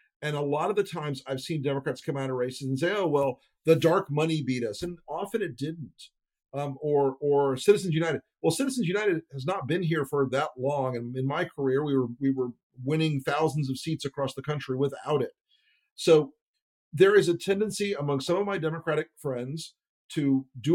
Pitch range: 135-165 Hz